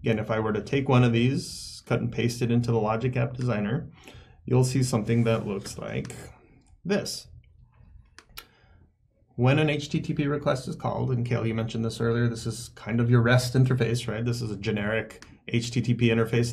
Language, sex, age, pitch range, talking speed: English, male, 30-49, 110-130 Hz, 180 wpm